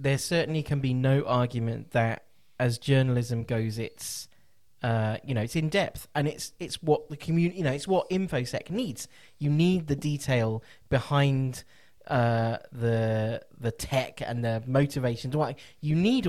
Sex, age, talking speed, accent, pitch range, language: male, 20-39, 160 wpm, British, 120-150 Hz, English